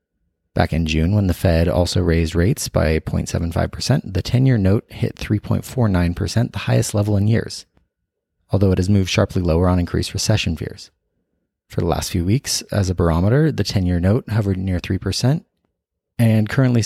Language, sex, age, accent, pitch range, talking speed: English, male, 30-49, American, 90-110 Hz, 165 wpm